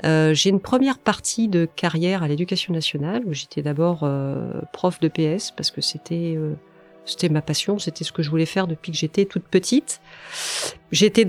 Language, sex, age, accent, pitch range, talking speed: French, female, 40-59, French, 155-190 Hz, 190 wpm